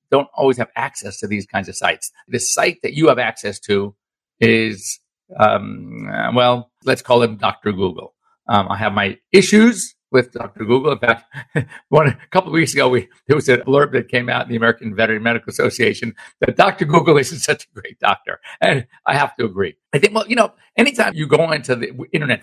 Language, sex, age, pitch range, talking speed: English, male, 50-69, 115-170 Hz, 210 wpm